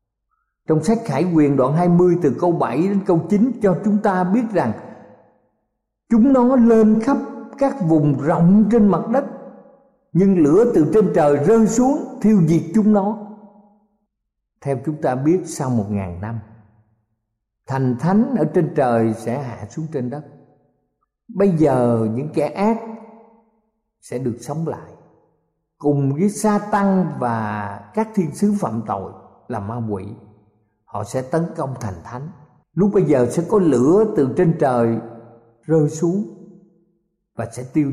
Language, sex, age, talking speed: Vietnamese, male, 50-69, 155 wpm